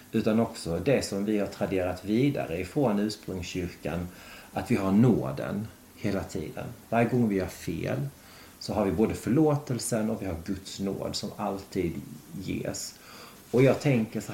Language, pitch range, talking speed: Swedish, 95-115 Hz, 160 wpm